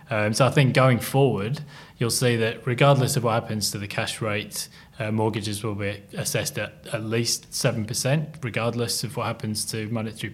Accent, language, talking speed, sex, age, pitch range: British, English, 185 wpm, male, 20-39, 110-130 Hz